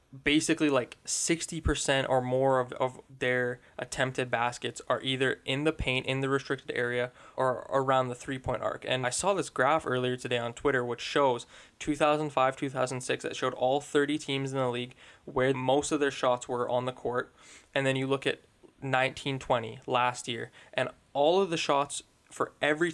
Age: 10-29